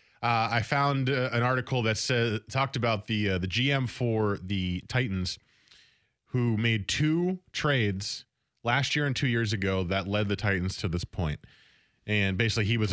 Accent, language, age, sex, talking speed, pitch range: American, English, 20-39, male, 175 wpm, 95-125 Hz